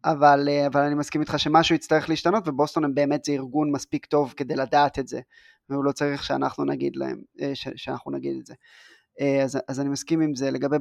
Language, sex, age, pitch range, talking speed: Hebrew, male, 20-39, 140-155 Hz, 205 wpm